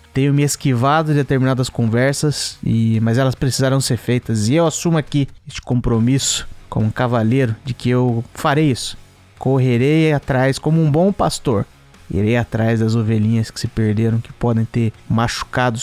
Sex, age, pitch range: male, 20-39, 115-160 Hz